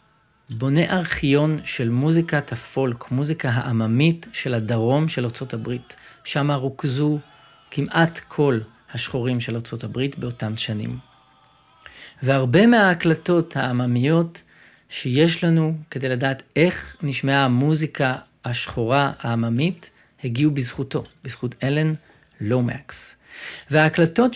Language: Hebrew